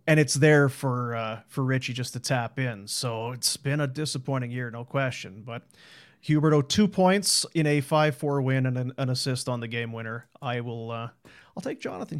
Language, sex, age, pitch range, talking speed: English, male, 40-59, 125-160 Hz, 200 wpm